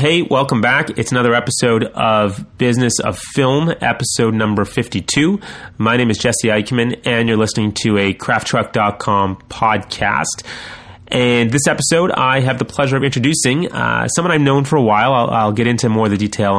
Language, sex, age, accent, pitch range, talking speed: English, male, 30-49, American, 105-125 Hz, 175 wpm